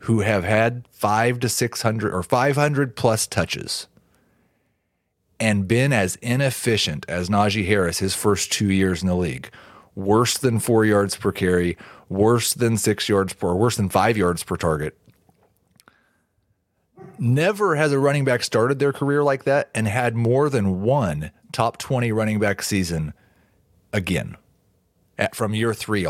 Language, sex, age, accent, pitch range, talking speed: English, male, 30-49, American, 100-130 Hz, 155 wpm